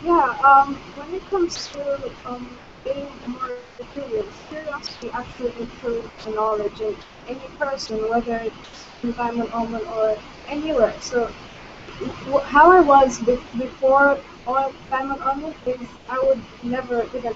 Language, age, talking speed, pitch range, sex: English, 20-39, 140 wpm, 230-275 Hz, female